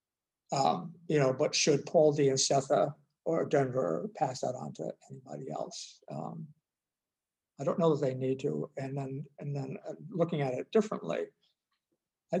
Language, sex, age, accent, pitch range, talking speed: English, male, 60-79, American, 135-180 Hz, 165 wpm